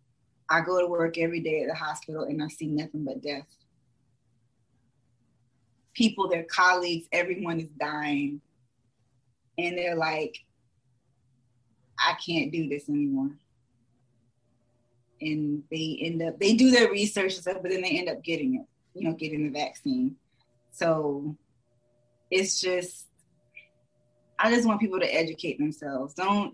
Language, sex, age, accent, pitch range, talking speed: English, female, 20-39, American, 125-170 Hz, 140 wpm